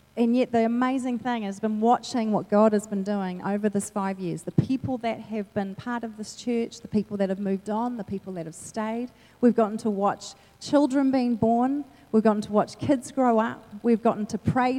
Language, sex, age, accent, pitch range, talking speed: English, female, 40-59, Australian, 195-245 Hz, 225 wpm